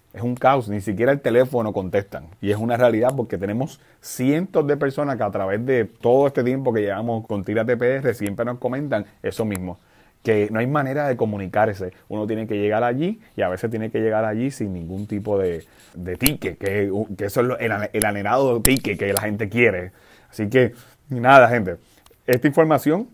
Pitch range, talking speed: 100-130 Hz, 200 wpm